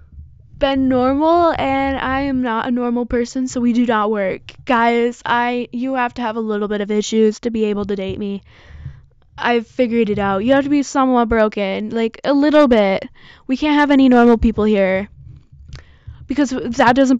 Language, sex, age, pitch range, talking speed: English, female, 10-29, 210-270 Hz, 190 wpm